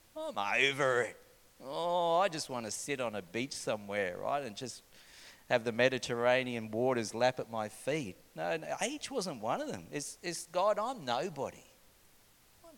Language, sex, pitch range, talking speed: English, male, 125-150 Hz, 175 wpm